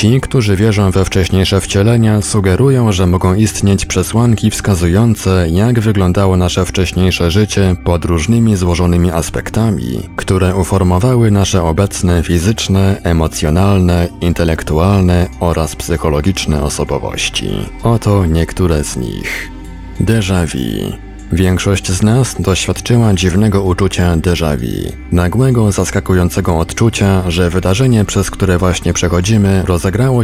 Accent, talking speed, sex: native, 105 wpm, male